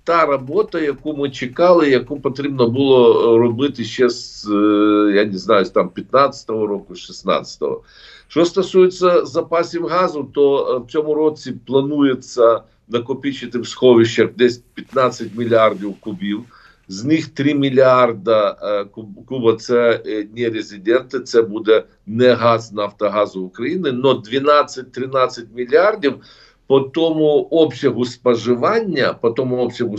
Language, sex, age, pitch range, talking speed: Ukrainian, male, 50-69, 115-145 Hz, 115 wpm